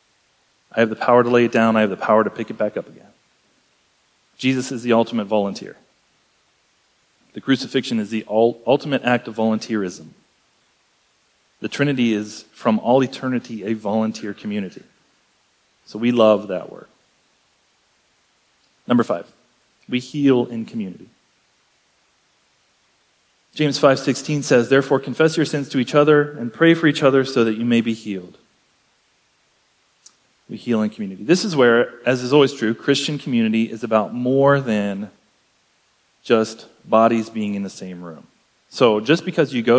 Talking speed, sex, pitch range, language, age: 150 wpm, male, 110-135 Hz, English, 30-49